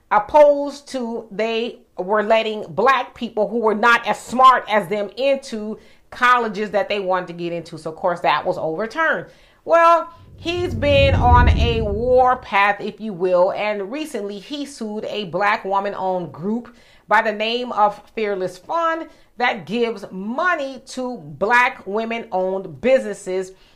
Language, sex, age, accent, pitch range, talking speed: English, female, 30-49, American, 205-265 Hz, 155 wpm